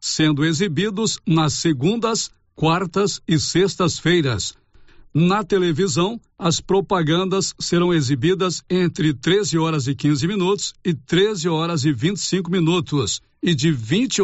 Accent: Brazilian